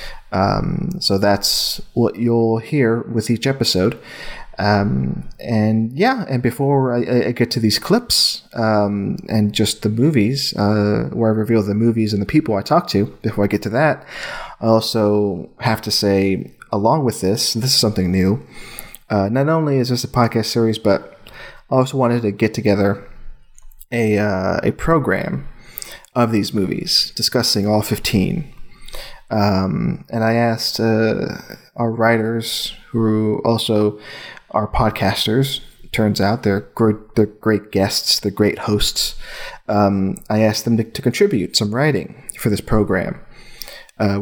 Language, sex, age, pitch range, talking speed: English, male, 30-49, 100-120 Hz, 155 wpm